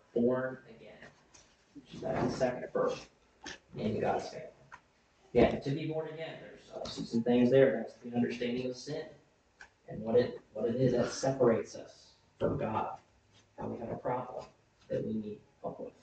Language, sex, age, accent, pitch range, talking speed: English, male, 30-49, American, 100-145 Hz, 175 wpm